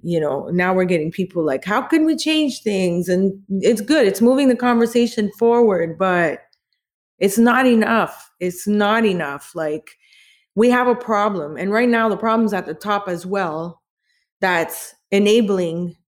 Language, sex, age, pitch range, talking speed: English, female, 20-39, 180-225 Hz, 165 wpm